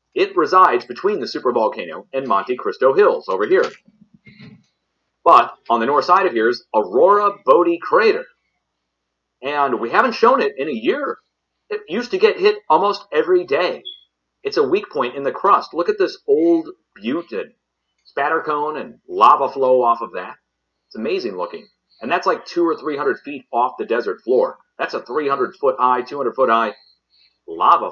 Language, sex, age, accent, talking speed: English, male, 40-59, American, 180 wpm